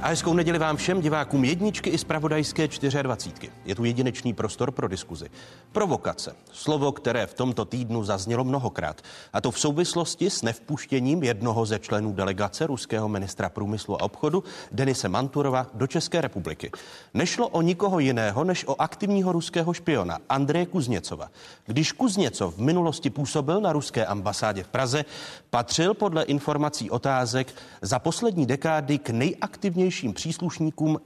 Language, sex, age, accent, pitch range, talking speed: Czech, male, 40-59, native, 120-165 Hz, 145 wpm